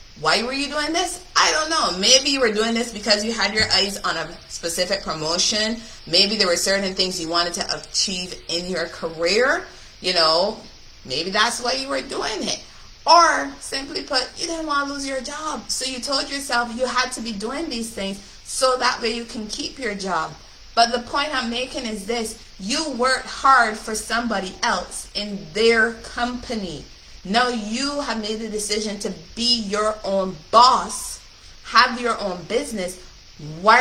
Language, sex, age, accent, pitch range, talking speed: English, female, 30-49, American, 190-240 Hz, 185 wpm